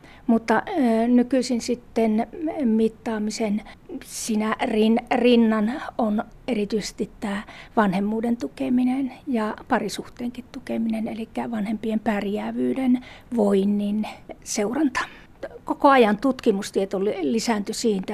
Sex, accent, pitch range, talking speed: female, native, 210-245 Hz, 80 wpm